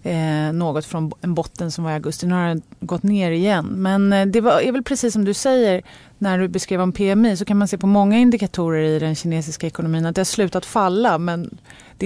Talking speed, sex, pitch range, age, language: 240 wpm, female, 165-200 Hz, 30-49, Swedish